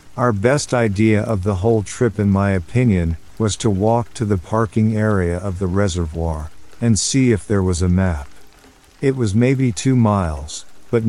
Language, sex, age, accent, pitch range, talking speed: English, male, 50-69, American, 90-115 Hz, 180 wpm